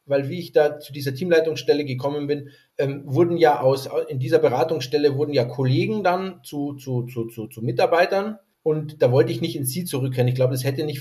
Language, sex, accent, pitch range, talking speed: German, male, German, 135-170 Hz, 185 wpm